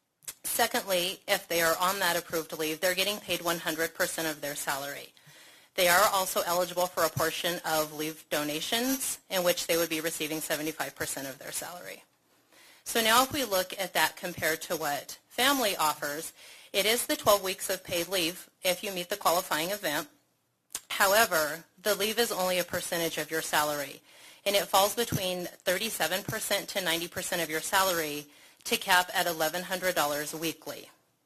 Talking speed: 165 wpm